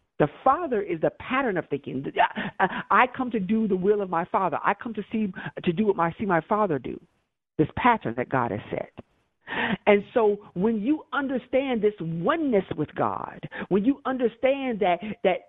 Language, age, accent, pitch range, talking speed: English, 50-69, American, 175-250 Hz, 185 wpm